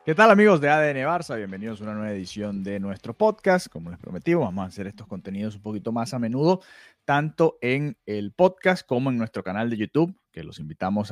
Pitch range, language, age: 105-160 Hz, Spanish, 30-49